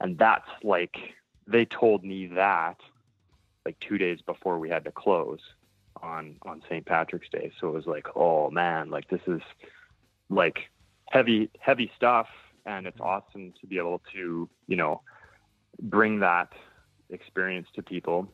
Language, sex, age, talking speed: English, male, 20-39, 155 wpm